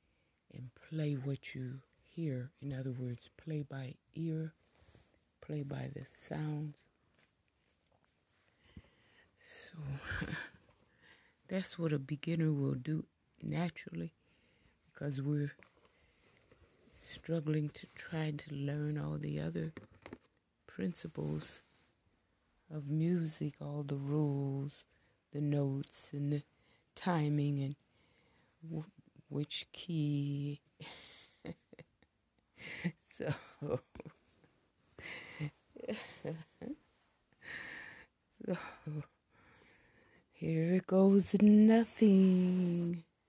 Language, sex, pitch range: English, female, 135-165 Hz